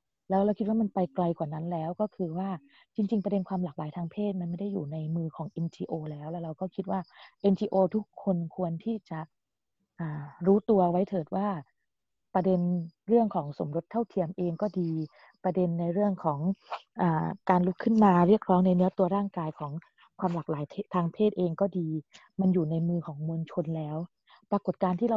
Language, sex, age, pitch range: Thai, female, 20-39, 170-200 Hz